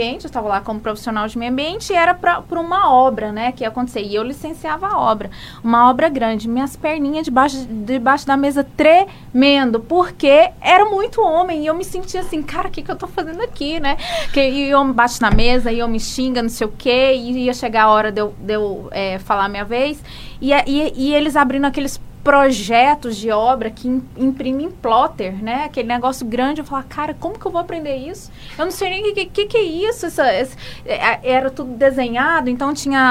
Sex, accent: female, Brazilian